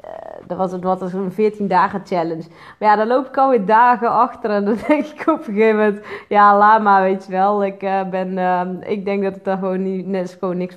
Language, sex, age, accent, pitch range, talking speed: Dutch, female, 30-49, Dutch, 170-210 Hz, 225 wpm